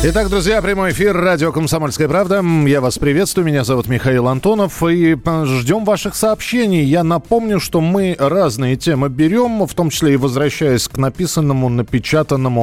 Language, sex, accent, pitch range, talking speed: Russian, male, native, 130-175 Hz, 155 wpm